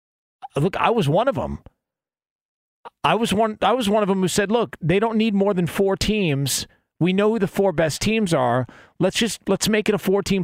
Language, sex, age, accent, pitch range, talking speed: English, male, 40-59, American, 165-215 Hz, 225 wpm